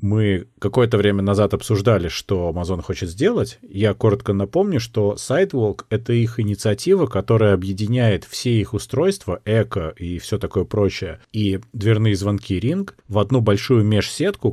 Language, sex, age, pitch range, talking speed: Russian, male, 30-49, 100-125 Hz, 150 wpm